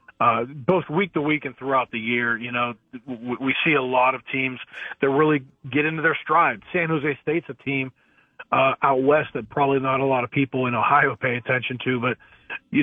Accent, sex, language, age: American, male, English, 40-59